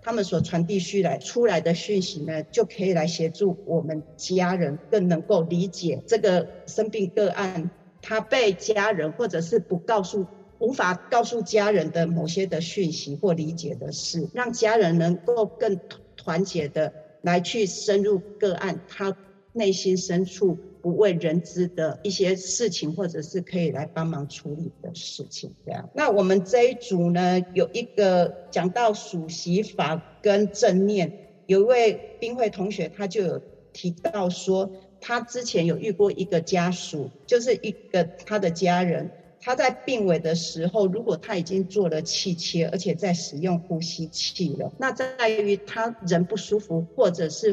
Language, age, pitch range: Chinese, 50-69, 170-205 Hz